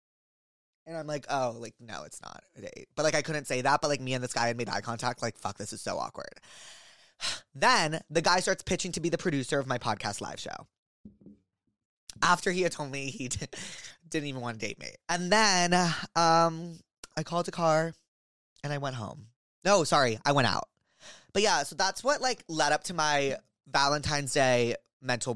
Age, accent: 20-39, American